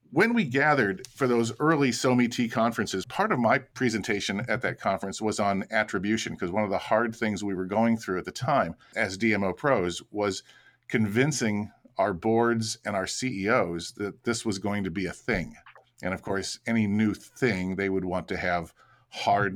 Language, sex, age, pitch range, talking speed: English, male, 40-59, 100-125 Hz, 185 wpm